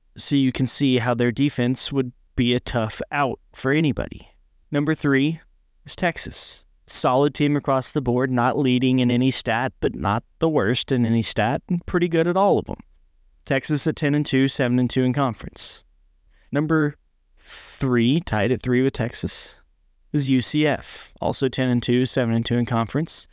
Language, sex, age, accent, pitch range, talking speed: English, male, 20-39, American, 120-145 Hz, 175 wpm